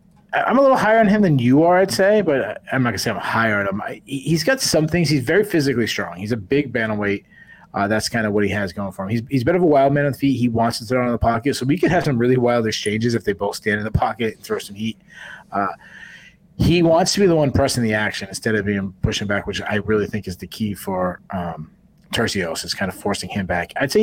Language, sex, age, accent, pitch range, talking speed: English, male, 30-49, American, 105-135 Hz, 290 wpm